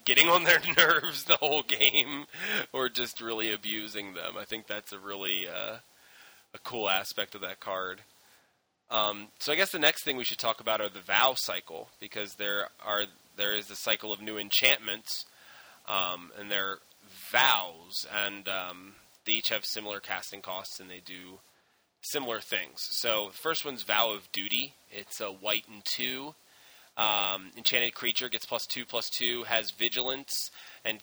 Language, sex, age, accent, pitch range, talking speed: English, male, 20-39, American, 100-120 Hz, 170 wpm